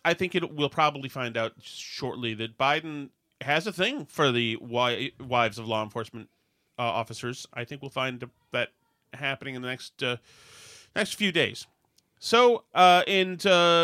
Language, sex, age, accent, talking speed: English, male, 40-59, American, 165 wpm